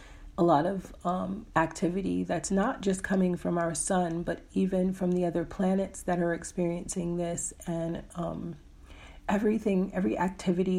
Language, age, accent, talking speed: English, 40-59, American, 150 wpm